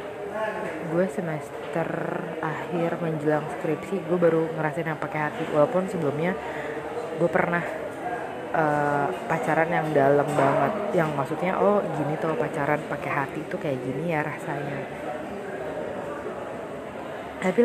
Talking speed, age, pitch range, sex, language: 115 wpm, 20-39, 145-170 Hz, female, Indonesian